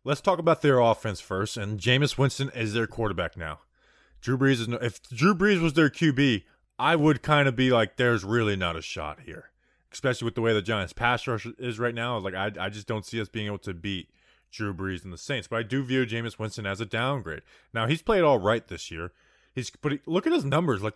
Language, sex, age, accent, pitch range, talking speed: English, male, 20-39, American, 105-140 Hz, 245 wpm